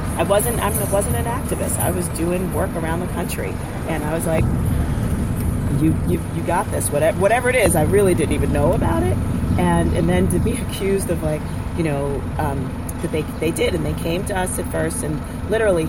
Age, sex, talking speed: 40-59, female, 210 wpm